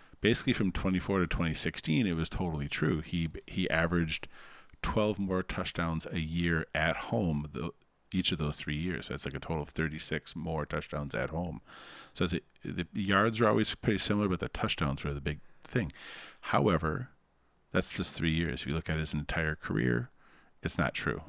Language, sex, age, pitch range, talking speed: English, male, 40-59, 75-85 Hz, 185 wpm